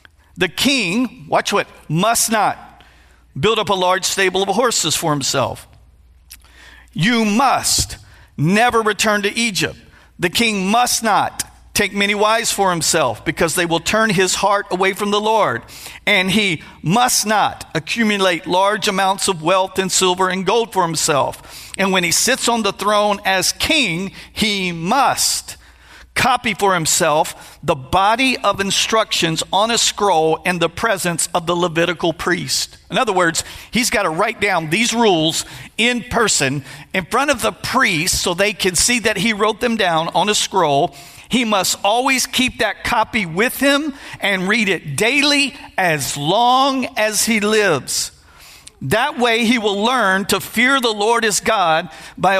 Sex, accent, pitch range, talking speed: male, American, 175-230 Hz, 160 wpm